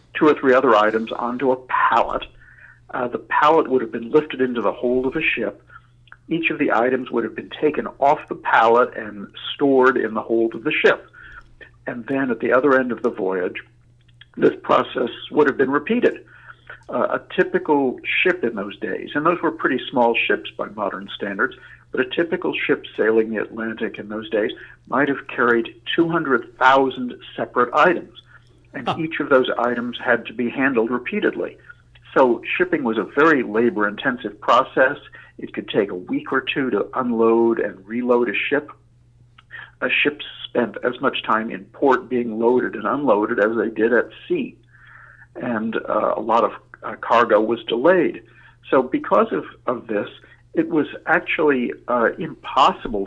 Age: 60-79